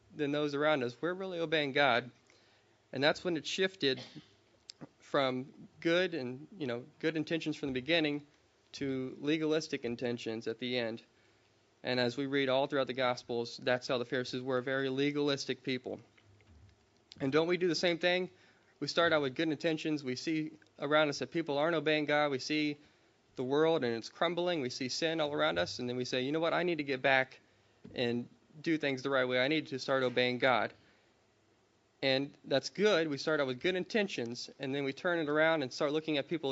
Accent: American